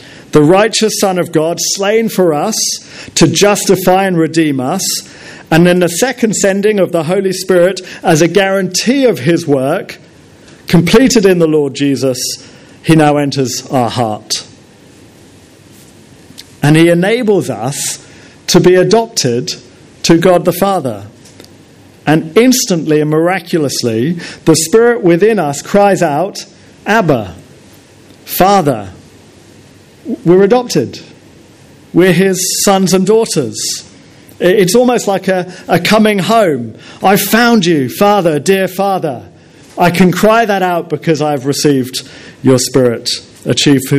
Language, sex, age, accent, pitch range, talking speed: English, male, 50-69, British, 135-185 Hz, 125 wpm